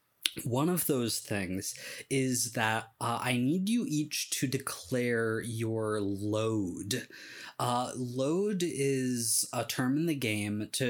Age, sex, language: 20-39, male, English